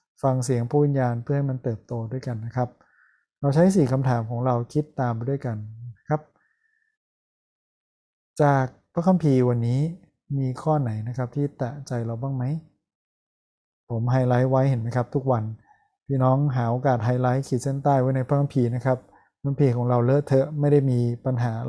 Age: 20-39